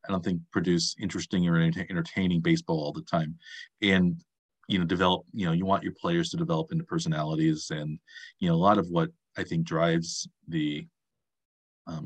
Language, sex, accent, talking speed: English, male, American, 185 wpm